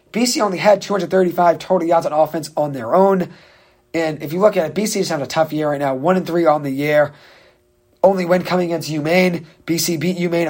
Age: 30-49